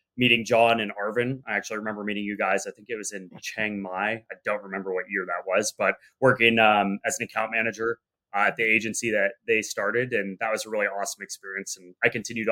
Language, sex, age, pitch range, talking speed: English, male, 20-39, 105-120 Hz, 230 wpm